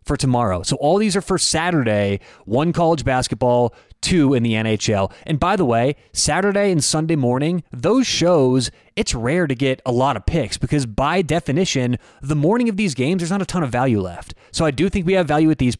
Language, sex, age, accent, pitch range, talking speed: English, male, 30-49, American, 120-160 Hz, 215 wpm